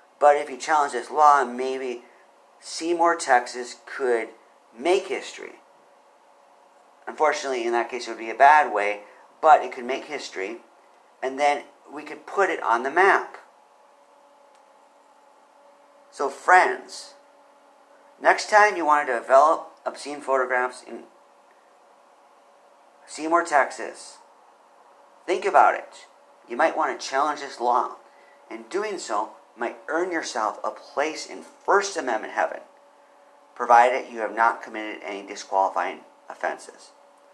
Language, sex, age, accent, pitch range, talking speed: English, male, 40-59, American, 115-170 Hz, 125 wpm